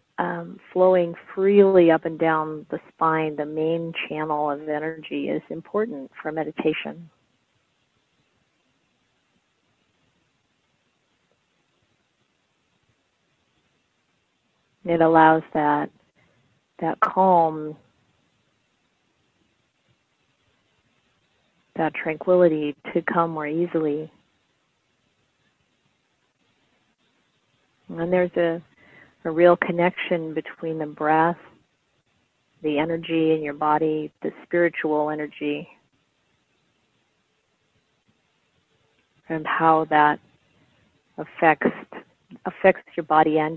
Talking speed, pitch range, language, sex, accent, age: 75 wpm, 155-170 Hz, English, female, American, 40-59